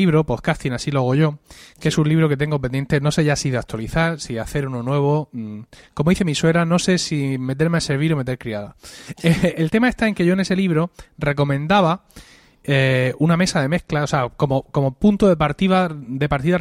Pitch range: 130-160 Hz